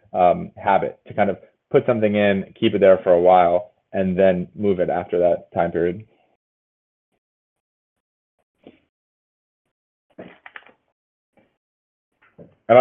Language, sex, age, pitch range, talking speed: English, male, 30-49, 95-110 Hz, 110 wpm